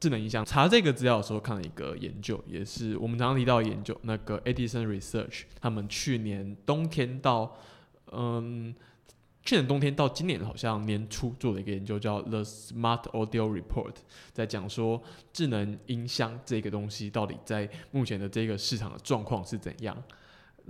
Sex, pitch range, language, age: male, 105-125 Hz, Chinese, 20-39